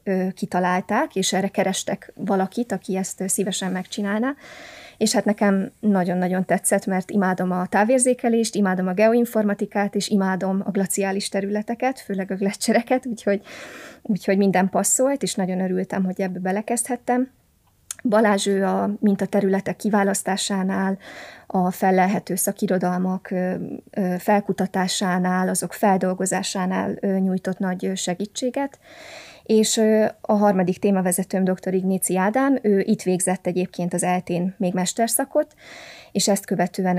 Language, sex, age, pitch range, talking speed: Hungarian, female, 20-39, 185-215 Hz, 115 wpm